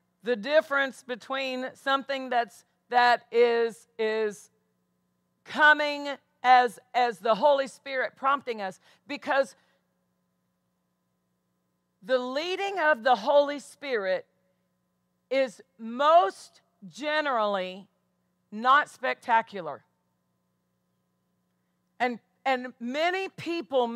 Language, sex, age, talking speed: English, female, 50-69, 80 wpm